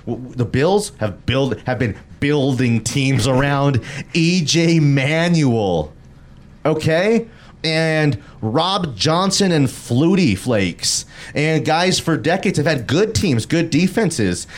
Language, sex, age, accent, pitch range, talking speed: English, male, 30-49, American, 95-140 Hz, 115 wpm